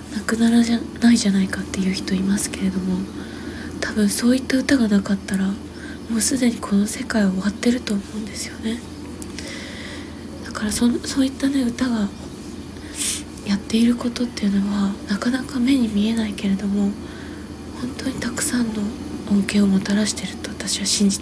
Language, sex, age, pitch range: Japanese, female, 20-39, 200-240 Hz